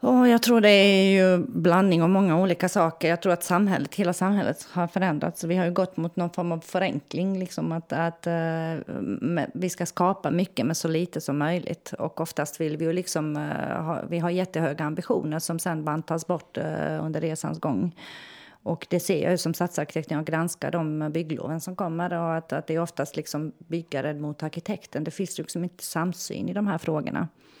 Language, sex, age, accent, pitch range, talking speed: Swedish, female, 30-49, native, 155-180 Hz, 195 wpm